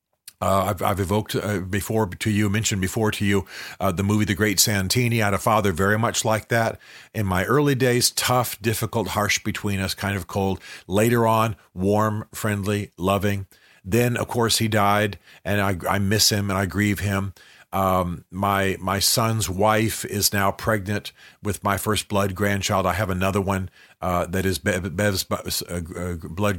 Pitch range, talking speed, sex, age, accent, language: 95-110 Hz, 180 wpm, male, 50-69, American, English